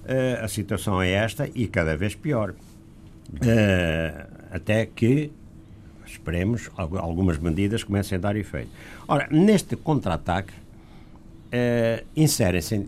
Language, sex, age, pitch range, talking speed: Portuguese, male, 60-79, 85-120 Hz, 110 wpm